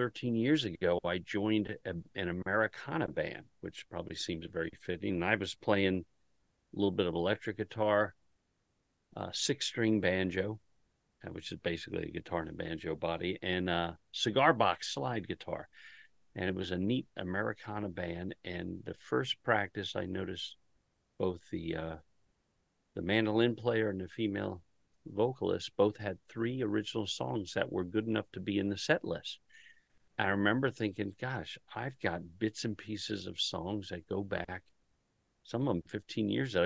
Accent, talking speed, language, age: American, 160 wpm, English, 50-69